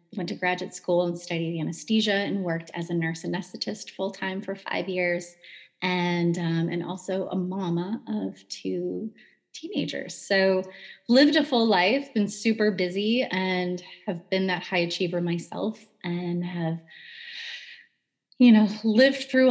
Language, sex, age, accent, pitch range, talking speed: English, female, 30-49, American, 170-200 Hz, 145 wpm